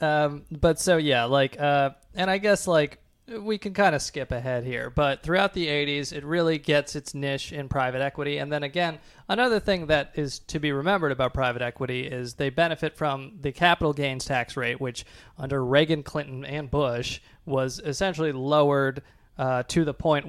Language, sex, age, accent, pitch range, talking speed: English, male, 20-39, American, 130-155 Hz, 190 wpm